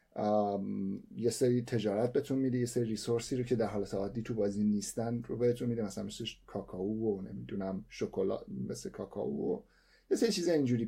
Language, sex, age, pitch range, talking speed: Persian, male, 30-49, 105-135 Hz, 175 wpm